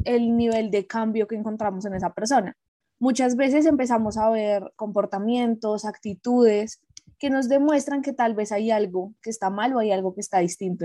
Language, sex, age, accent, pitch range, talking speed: Spanish, female, 10-29, Colombian, 195-230 Hz, 185 wpm